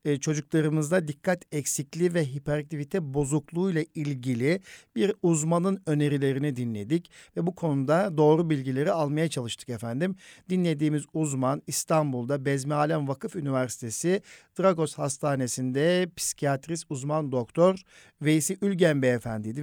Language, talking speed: Turkish, 105 wpm